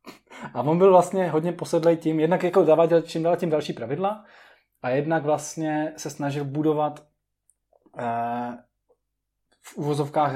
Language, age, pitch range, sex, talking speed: Czech, 20-39, 140-170 Hz, male, 140 wpm